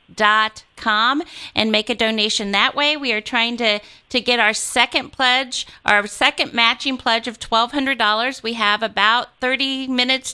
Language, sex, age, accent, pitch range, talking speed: English, female, 40-59, American, 220-265 Hz, 175 wpm